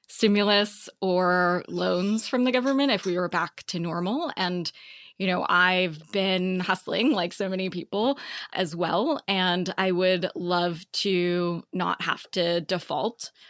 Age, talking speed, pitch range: 20-39, 145 wpm, 175-195 Hz